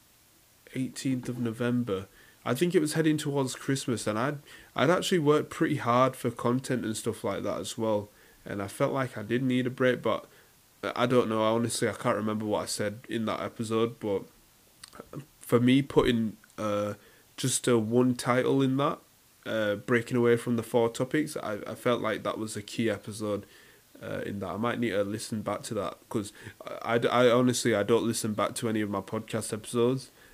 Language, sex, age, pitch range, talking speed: English, male, 20-39, 105-125 Hz, 200 wpm